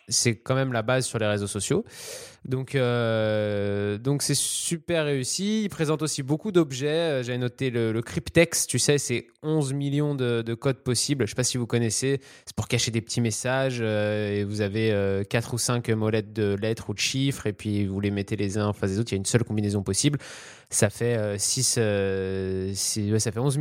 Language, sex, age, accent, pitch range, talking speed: French, male, 20-39, French, 110-140 Hz, 225 wpm